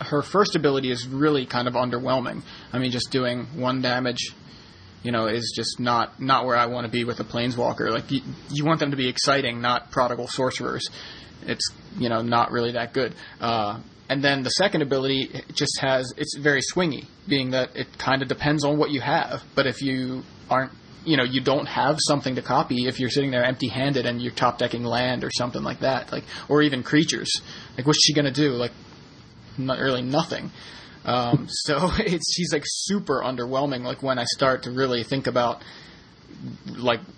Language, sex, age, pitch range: English, male, 20-39, 125-145 Hz